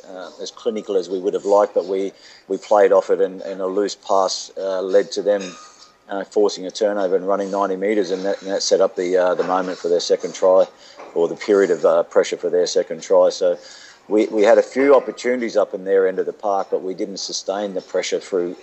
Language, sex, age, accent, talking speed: English, male, 50-69, Australian, 240 wpm